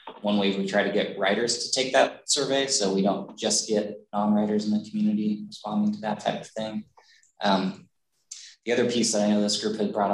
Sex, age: male, 20-39